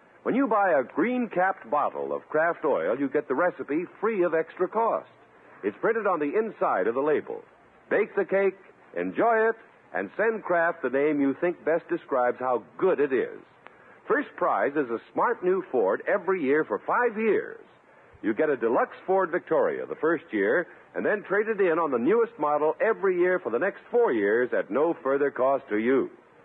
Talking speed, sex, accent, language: 195 wpm, male, American, English